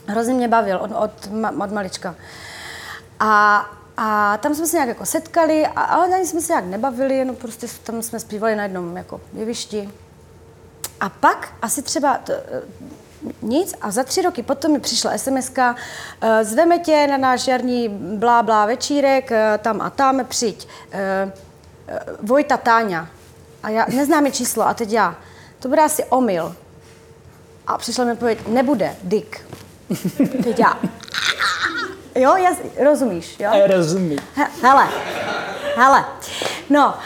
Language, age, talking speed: Czech, 30-49, 145 wpm